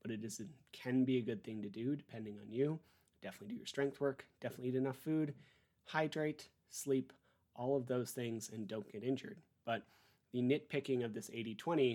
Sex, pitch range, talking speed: male, 115-140 Hz, 200 wpm